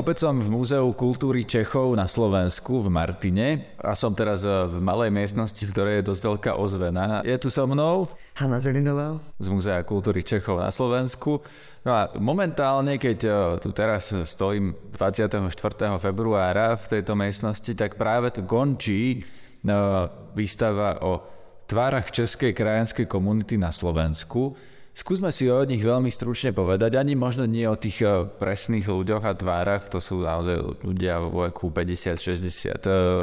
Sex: male